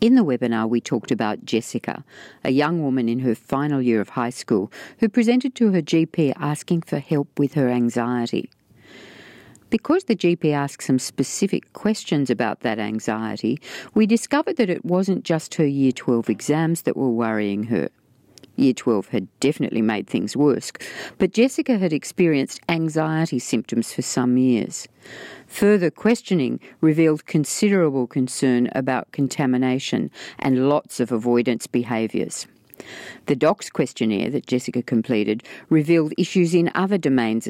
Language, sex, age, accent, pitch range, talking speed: English, female, 50-69, Australian, 120-175 Hz, 145 wpm